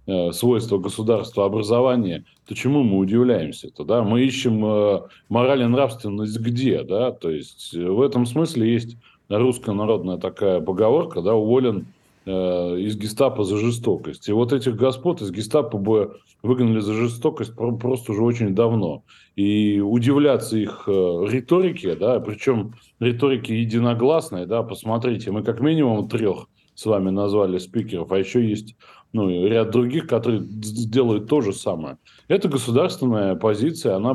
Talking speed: 140 wpm